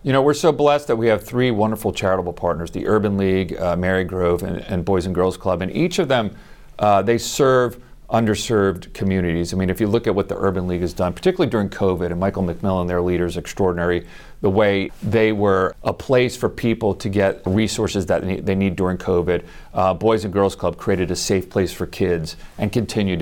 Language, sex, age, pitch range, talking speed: English, male, 40-59, 90-110 Hz, 215 wpm